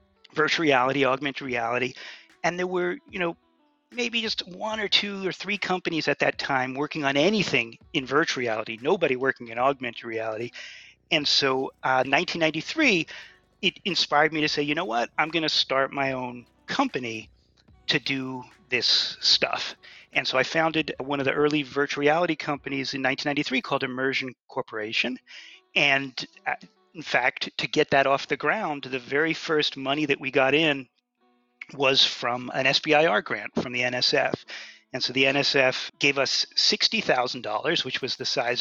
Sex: male